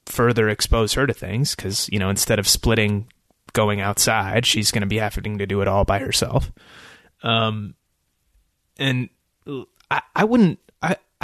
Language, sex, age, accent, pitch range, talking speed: English, male, 20-39, American, 105-130 Hz, 155 wpm